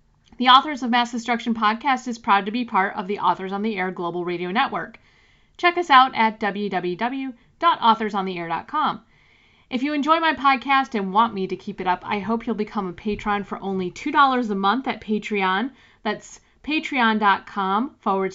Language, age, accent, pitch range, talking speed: English, 40-59, American, 185-235 Hz, 175 wpm